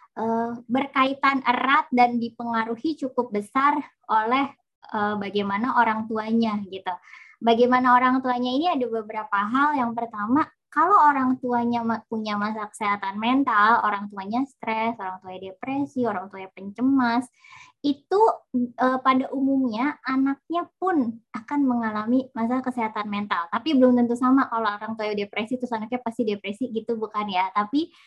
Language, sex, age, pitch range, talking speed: Indonesian, male, 20-39, 210-265 Hz, 140 wpm